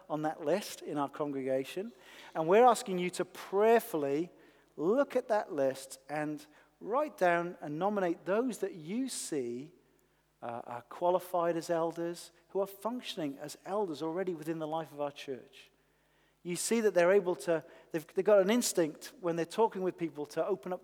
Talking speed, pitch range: 175 wpm, 145-185 Hz